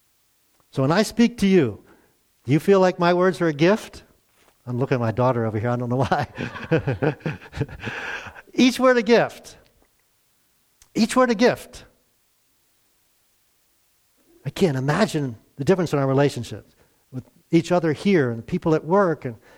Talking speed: 160 wpm